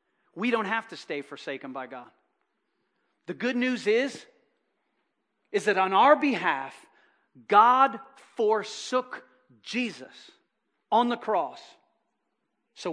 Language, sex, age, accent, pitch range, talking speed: English, male, 40-59, American, 175-225 Hz, 110 wpm